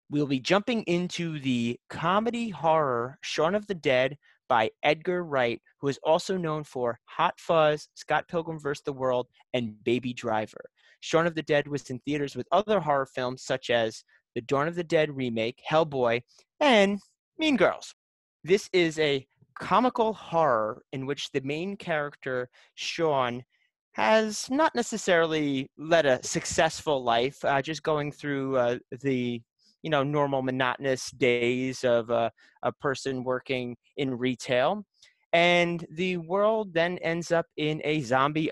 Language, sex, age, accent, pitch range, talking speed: English, male, 30-49, American, 125-165 Hz, 150 wpm